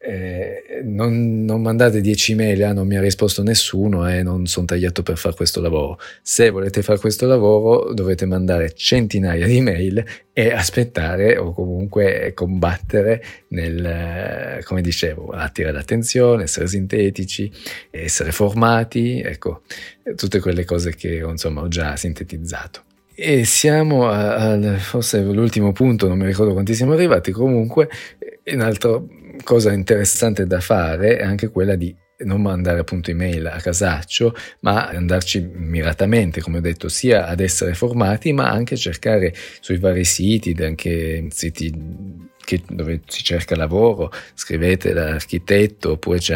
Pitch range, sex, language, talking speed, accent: 85-110 Hz, male, Italian, 140 wpm, native